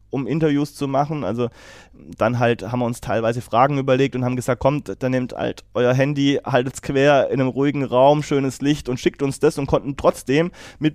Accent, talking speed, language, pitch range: German, 210 wpm, German, 125-140 Hz